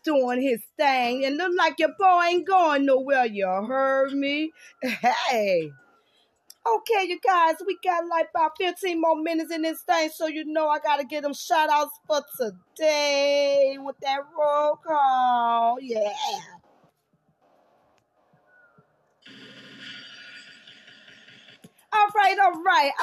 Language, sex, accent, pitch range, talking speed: English, female, American, 255-330 Hz, 125 wpm